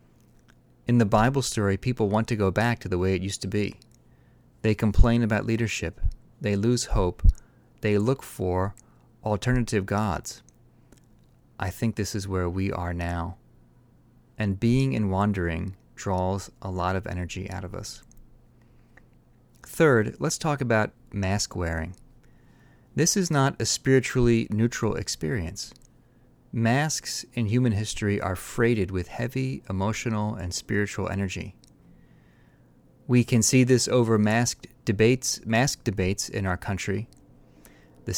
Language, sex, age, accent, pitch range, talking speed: English, male, 30-49, American, 95-120 Hz, 135 wpm